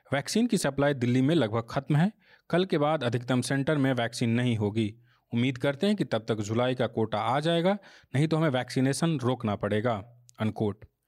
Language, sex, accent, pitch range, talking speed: Hindi, male, native, 115-150 Hz, 190 wpm